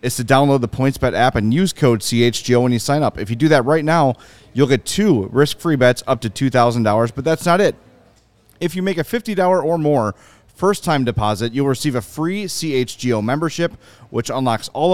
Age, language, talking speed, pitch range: 30-49, English, 200 wpm, 120-150 Hz